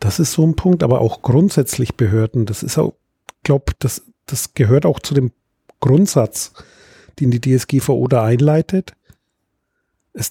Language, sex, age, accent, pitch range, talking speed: German, male, 40-59, German, 120-150 Hz, 150 wpm